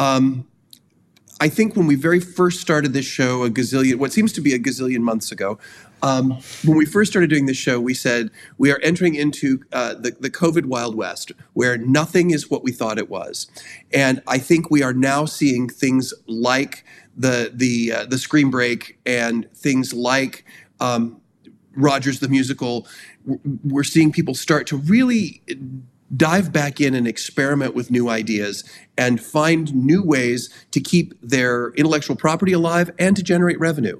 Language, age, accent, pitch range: English, 40-59, American, 125-150 Hz